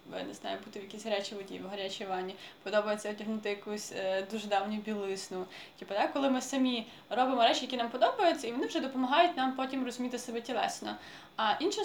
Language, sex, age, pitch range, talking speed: Ukrainian, female, 20-39, 220-260 Hz, 185 wpm